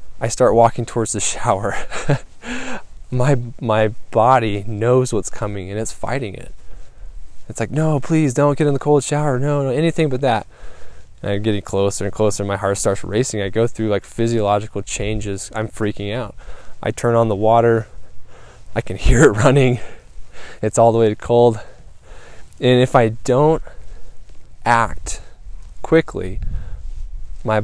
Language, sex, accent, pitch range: English, male, American, 100-130 Hz